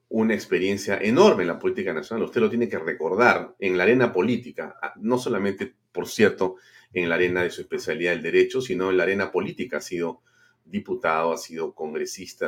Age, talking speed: 40-59, 190 wpm